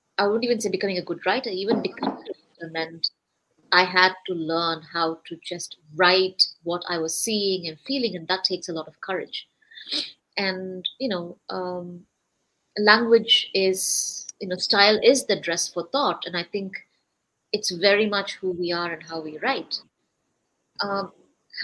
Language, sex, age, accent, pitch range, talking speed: English, female, 30-49, Indian, 175-205 Hz, 165 wpm